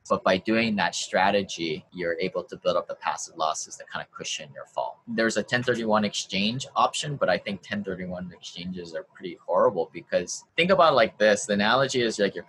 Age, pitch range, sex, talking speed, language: 20-39, 95-115 Hz, male, 205 wpm, English